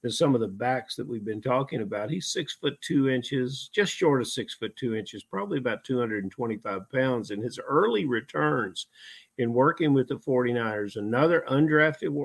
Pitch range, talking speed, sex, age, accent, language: 120-145 Hz, 180 wpm, male, 50-69, American, English